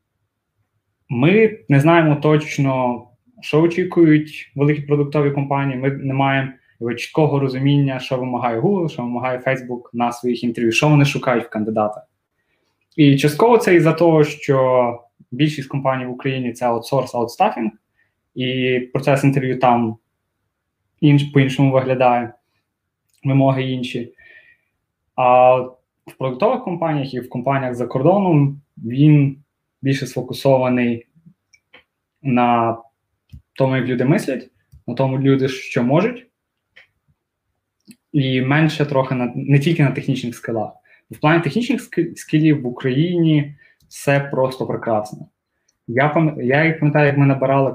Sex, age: male, 20-39